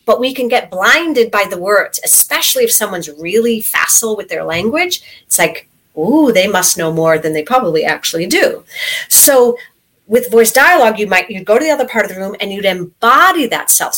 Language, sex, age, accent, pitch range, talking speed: English, female, 40-59, American, 185-280 Hz, 205 wpm